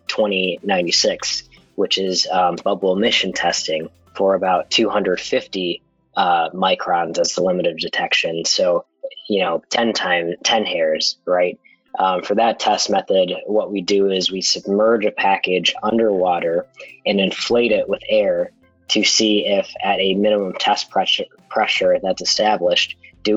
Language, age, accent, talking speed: English, 20-39, American, 145 wpm